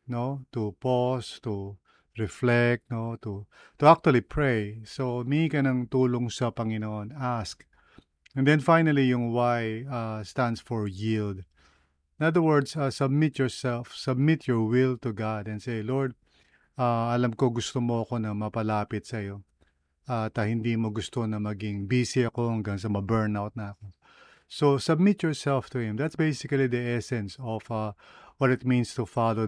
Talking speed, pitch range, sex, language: 165 wpm, 110-130 Hz, male, English